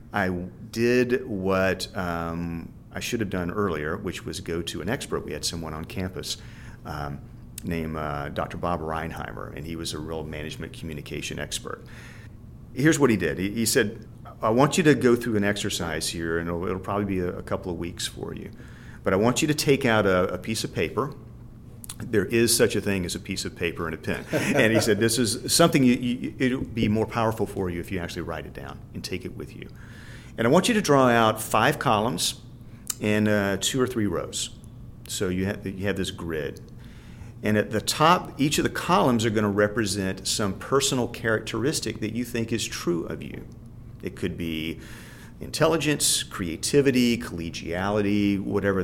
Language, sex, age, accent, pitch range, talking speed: English, male, 40-59, American, 90-120 Hz, 200 wpm